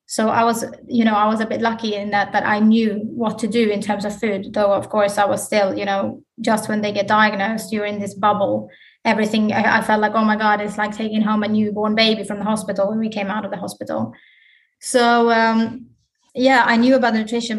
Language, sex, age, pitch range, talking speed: English, female, 20-39, 210-235 Hz, 240 wpm